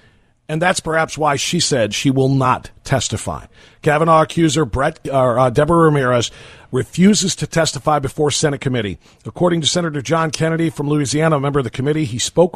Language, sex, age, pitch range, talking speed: English, male, 50-69, 120-155 Hz, 165 wpm